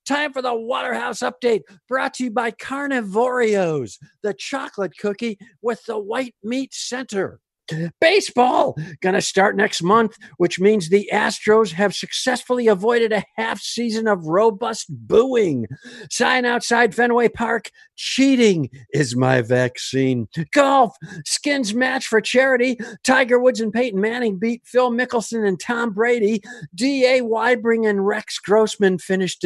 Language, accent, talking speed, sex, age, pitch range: English, American, 135 wpm, male, 50-69, 175-245 Hz